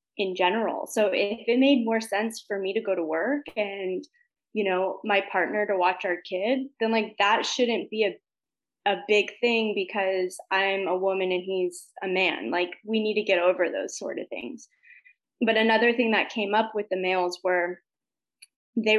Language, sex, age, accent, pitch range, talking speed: English, female, 20-39, American, 185-230 Hz, 195 wpm